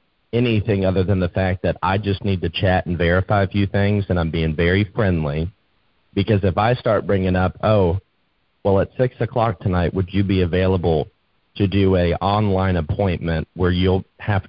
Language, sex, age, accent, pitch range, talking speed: English, male, 30-49, American, 85-100 Hz, 185 wpm